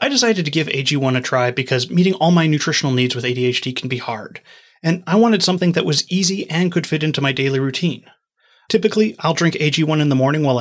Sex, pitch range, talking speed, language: male, 130-175 Hz, 225 wpm, English